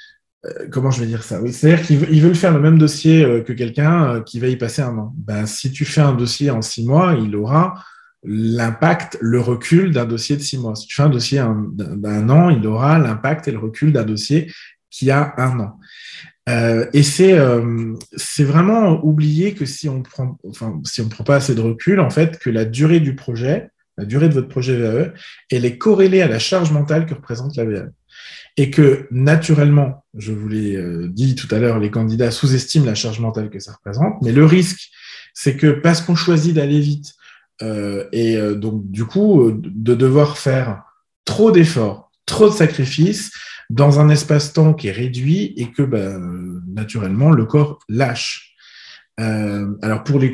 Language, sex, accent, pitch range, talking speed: French, male, French, 115-155 Hz, 190 wpm